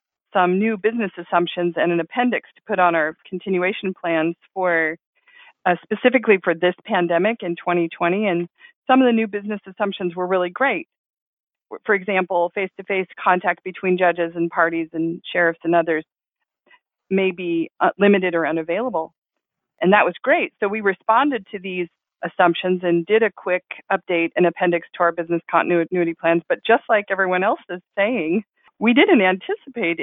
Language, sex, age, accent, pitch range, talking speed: English, female, 40-59, American, 170-205 Hz, 160 wpm